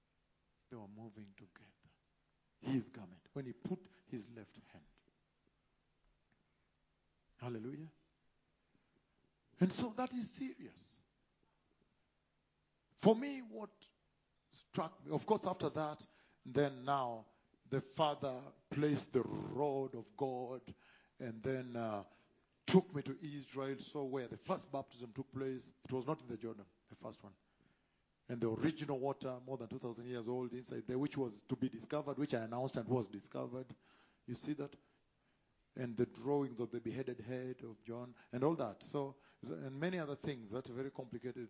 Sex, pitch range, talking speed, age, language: male, 120-150 Hz, 150 wpm, 50-69, English